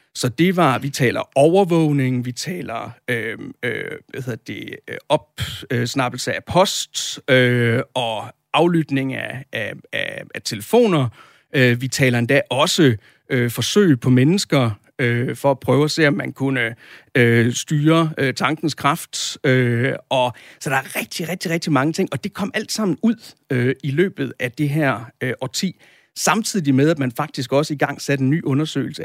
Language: Danish